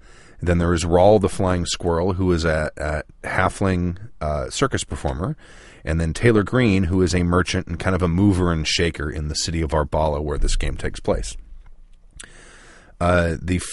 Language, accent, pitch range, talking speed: English, American, 80-95 Hz, 185 wpm